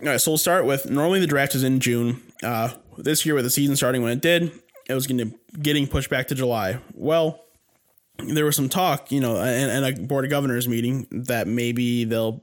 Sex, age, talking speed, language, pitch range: male, 20-39, 225 wpm, English, 120-140 Hz